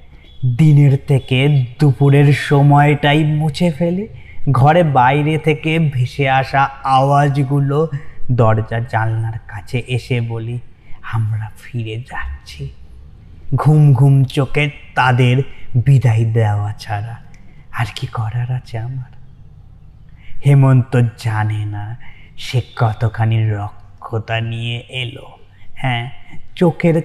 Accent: native